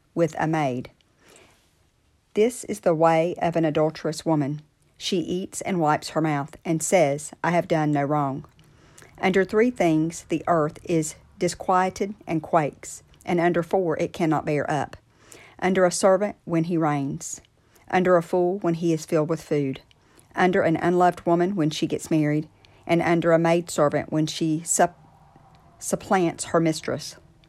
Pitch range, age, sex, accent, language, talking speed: 155-180 Hz, 50-69, female, American, English, 160 wpm